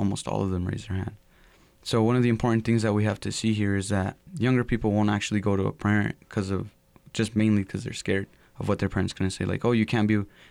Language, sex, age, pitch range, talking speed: English, male, 20-39, 100-110 Hz, 275 wpm